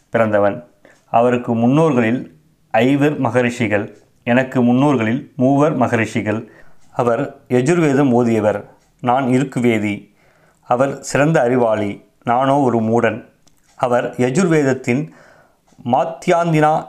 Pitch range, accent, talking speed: 115-140 Hz, native, 80 wpm